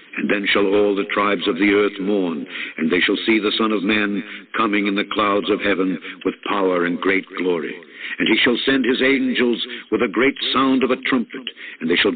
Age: 70-89